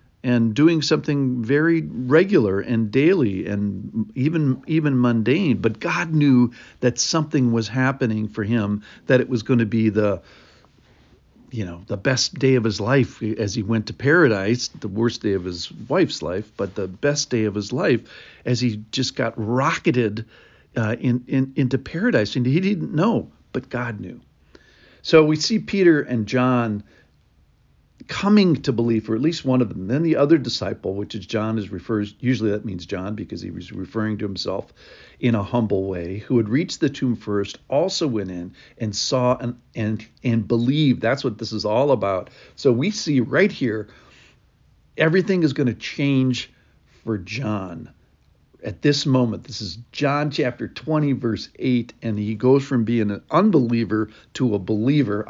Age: 50-69